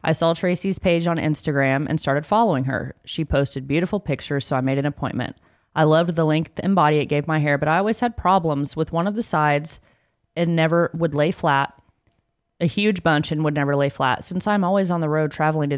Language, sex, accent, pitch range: English, female, American, 140-170 Hz